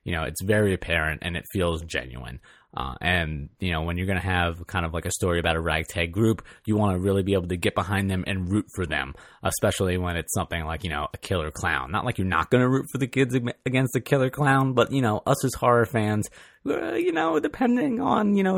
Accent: American